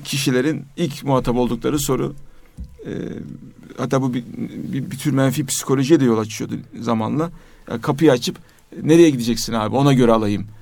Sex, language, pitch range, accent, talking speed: male, Turkish, 125-155 Hz, native, 155 wpm